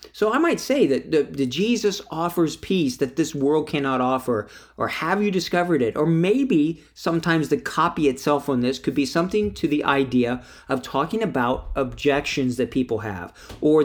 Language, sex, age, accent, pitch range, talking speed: English, male, 40-59, American, 135-170 Hz, 180 wpm